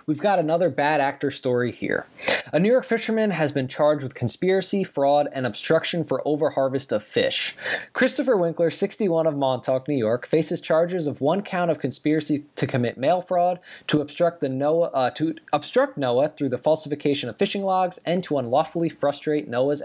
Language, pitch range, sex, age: English, 135-175 Hz, male, 20-39